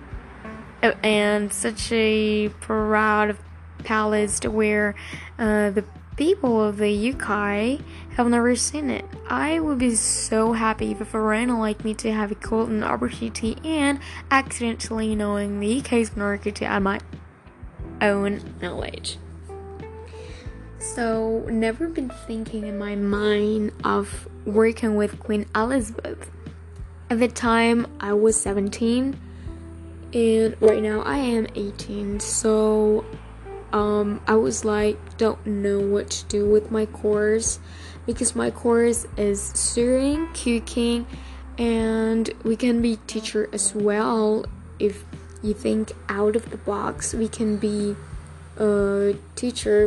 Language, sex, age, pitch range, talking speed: English, female, 10-29, 200-225 Hz, 125 wpm